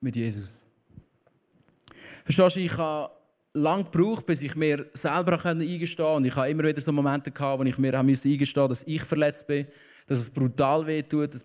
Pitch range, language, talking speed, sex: 130-150 Hz, German, 185 wpm, male